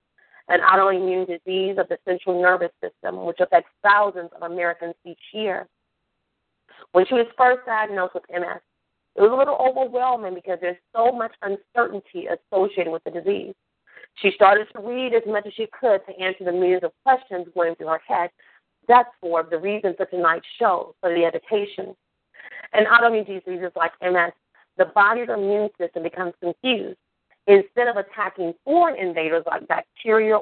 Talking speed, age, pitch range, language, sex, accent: 165 wpm, 40-59, 175-215 Hz, English, female, American